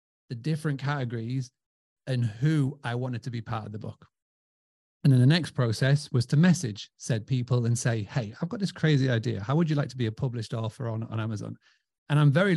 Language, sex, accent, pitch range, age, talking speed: English, male, British, 120-150 Hz, 30-49, 220 wpm